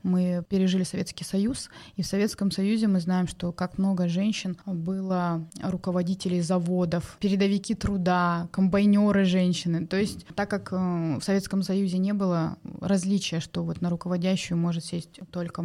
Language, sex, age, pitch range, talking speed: Russian, female, 20-39, 175-195 Hz, 145 wpm